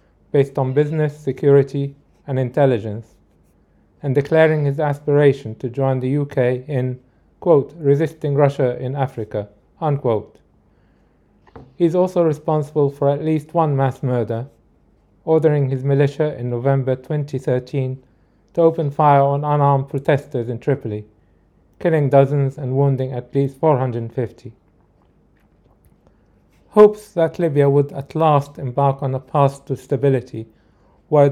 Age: 40-59